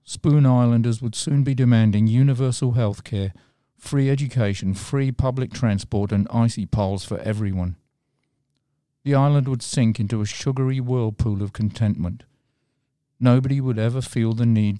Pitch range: 105-135 Hz